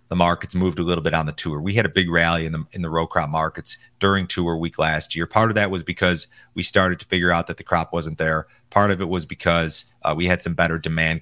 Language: English